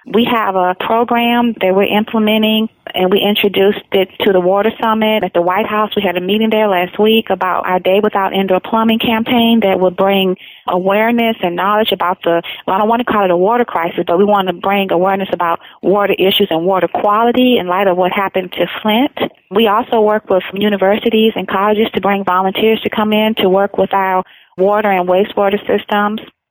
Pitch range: 195-225 Hz